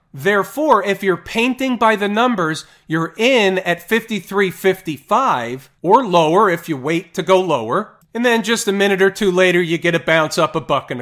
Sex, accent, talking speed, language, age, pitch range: male, American, 190 wpm, English, 40-59, 160-195 Hz